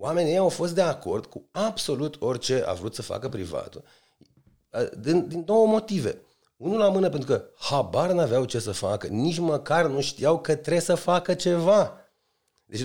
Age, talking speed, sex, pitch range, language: 30-49, 180 wpm, male, 120-185 Hz, Romanian